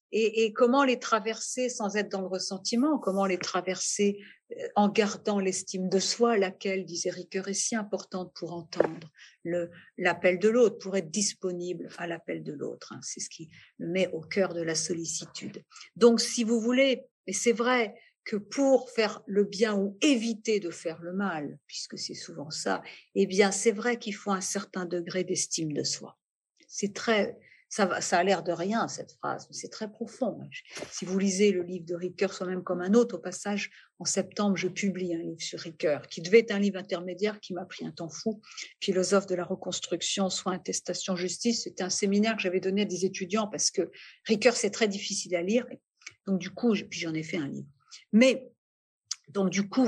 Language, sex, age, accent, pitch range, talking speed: French, female, 50-69, French, 185-230 Hz, 195 wpm